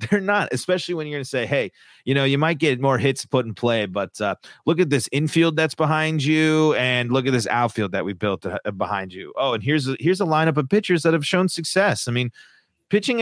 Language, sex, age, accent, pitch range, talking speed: English, male, 30-49, American, 110-155 Hz, 245 wpm